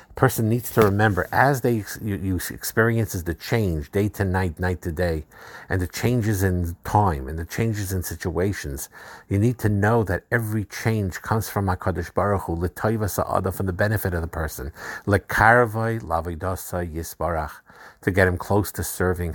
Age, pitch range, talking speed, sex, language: 50-69, 85-105 Hz, 160 wpm, male, English